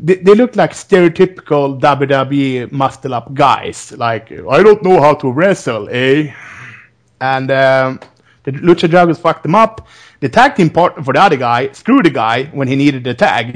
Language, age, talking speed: English, 30-49, 170 wpm